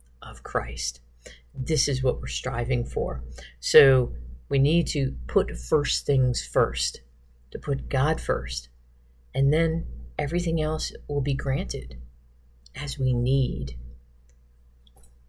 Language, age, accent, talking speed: English, 50-69, American, 120 wpm